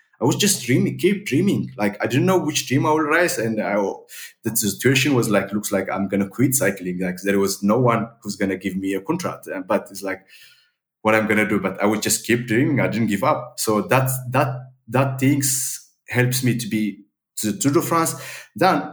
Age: 20-39